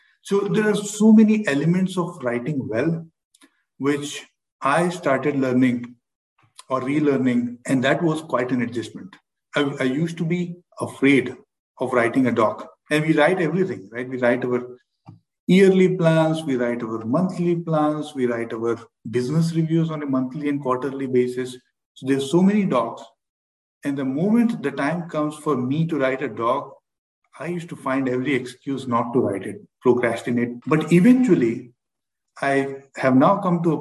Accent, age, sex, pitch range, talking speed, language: Indian, 50-69, male, 125-165 Hz, 165 wpm, English